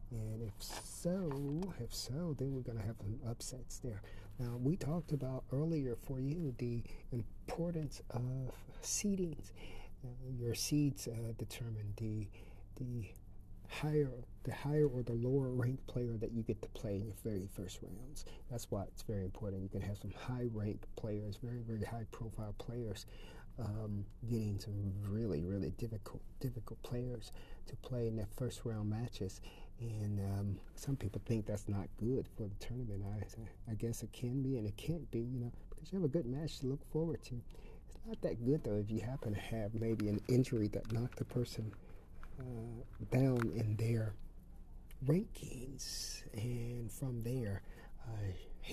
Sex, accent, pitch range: male, American, 100-125 Hz